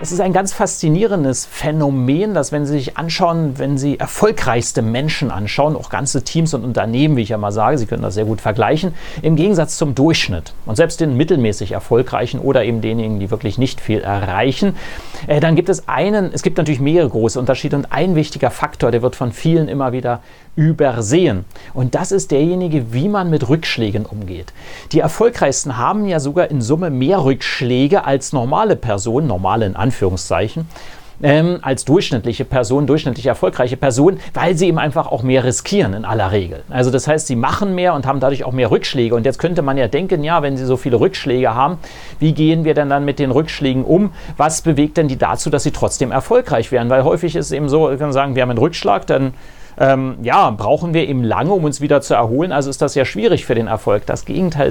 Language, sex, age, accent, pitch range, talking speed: German, male, 30-49, German, 125-160 Hz, 205 wpm